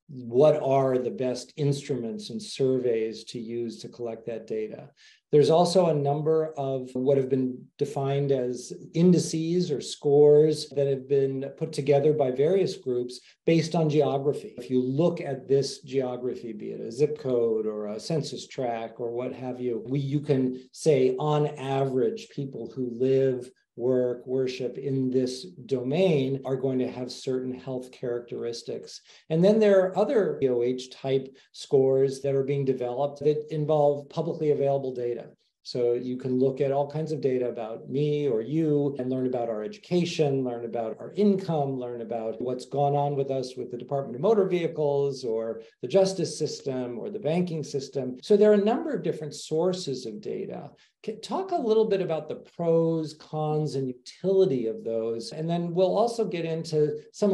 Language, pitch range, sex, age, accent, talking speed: English, 125-155 Hz, male, 40-59, American, 175 wpm